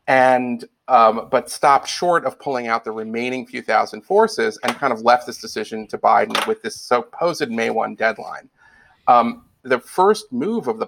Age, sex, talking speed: 40-59, male, 180 wpm